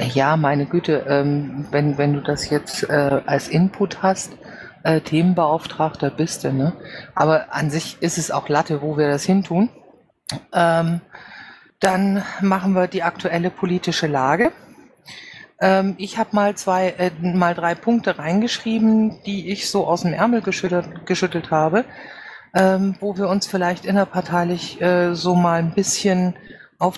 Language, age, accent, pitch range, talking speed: German, 50-69, German, 165-195 Hz, 145 wpm